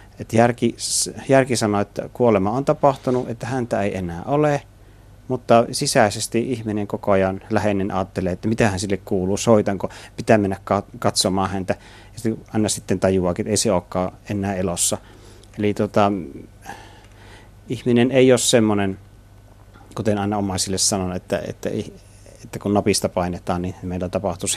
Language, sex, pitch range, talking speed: Finnish, male, 95-110 Hz, 145 wpm